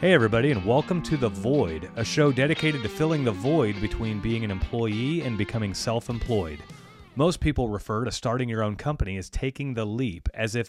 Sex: male